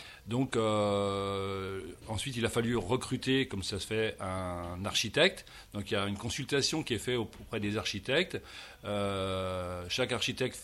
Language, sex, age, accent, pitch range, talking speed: French, male, 40-59, French, 95-125 Hz, 160 wpm